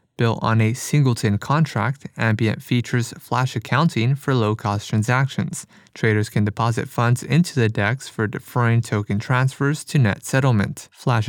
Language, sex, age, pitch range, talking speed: English, male, 20-39, 115-135 Hz, 145 wpm